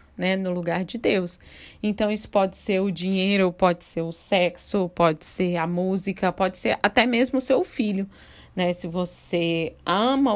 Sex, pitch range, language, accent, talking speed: female, 175-230 Hz, Portuguese, Brazilian, 175 wpm